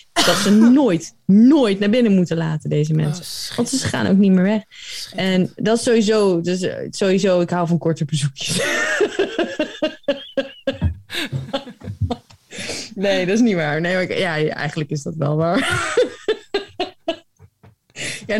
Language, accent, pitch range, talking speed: Dutch, Dutch, 140-210 Hz, 135 wpm